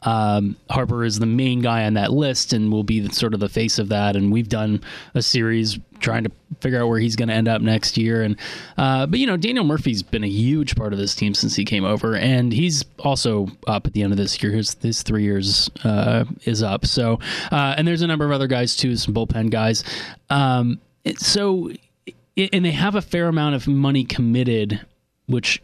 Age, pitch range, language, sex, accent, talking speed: 20-39, 110-140 Hz, English, male, American, 225 wpm